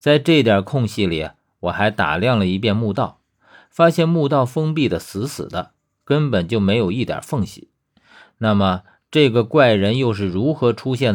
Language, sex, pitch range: Chinese, male, 95-140 Hz